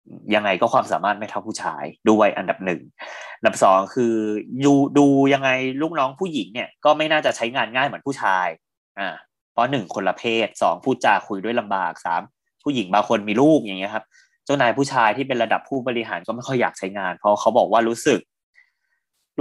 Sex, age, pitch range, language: male, 20-39, 105-140 Hz, Thai